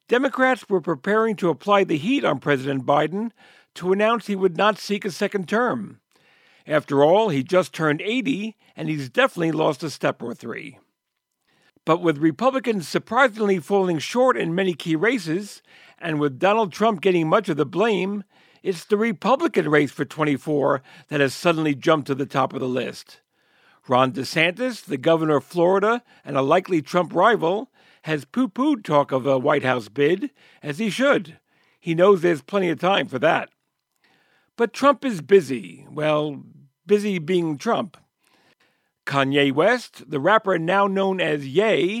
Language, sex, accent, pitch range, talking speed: English, male, American, 150-215 Hz, 165 wpm